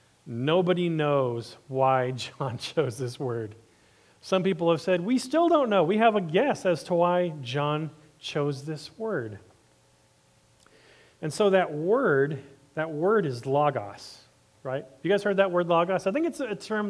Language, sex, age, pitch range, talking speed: English, male, 40-59, 135-180 Hz, 165 wpm